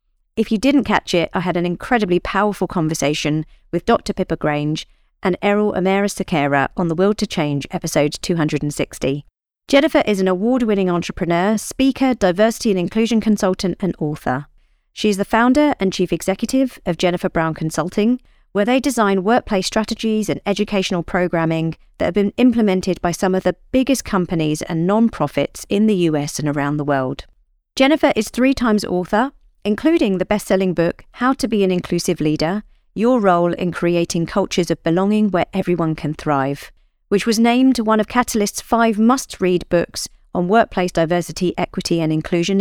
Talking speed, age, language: 165 wpm, 40-59, English